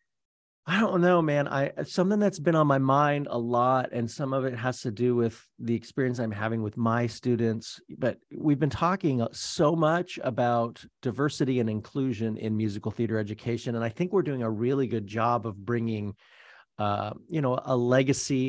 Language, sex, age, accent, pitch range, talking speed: English, male, 40-59, American, 110-145 Hz, 190 wpm